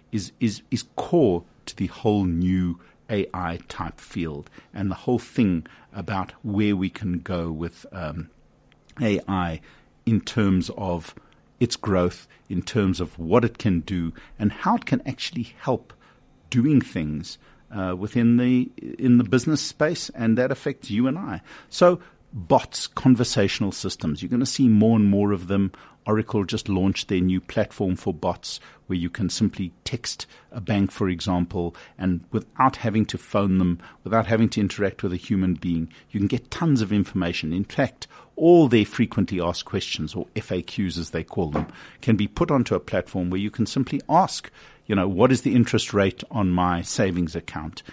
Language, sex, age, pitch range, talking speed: English, male, 50-69, 90-115 Hz, 180 wpm